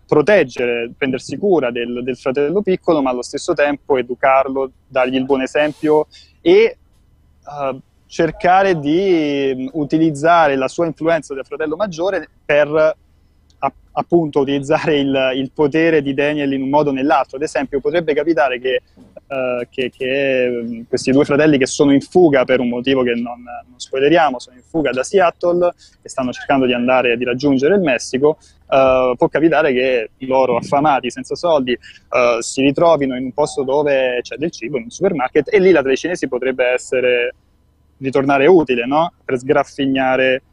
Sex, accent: male, native